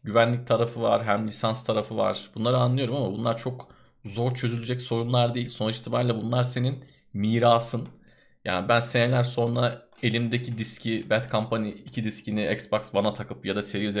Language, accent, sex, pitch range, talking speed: Turkish, native, male, 105-125 Hz, 160 wpm